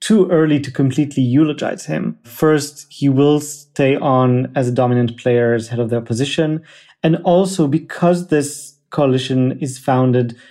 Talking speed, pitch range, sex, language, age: 155 wpm, 125-150 Hz, male, English, 30-49